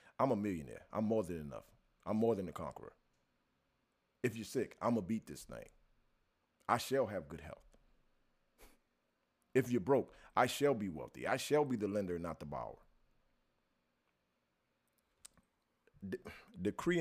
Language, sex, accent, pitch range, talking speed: English, male, American, 90-125 Hz, 150 wpm